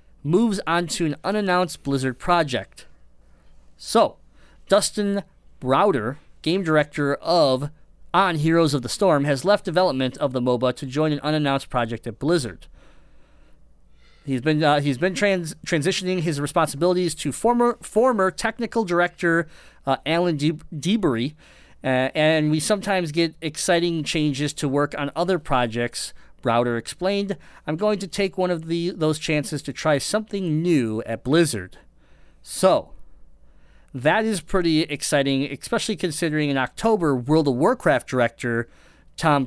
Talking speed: 140 wpm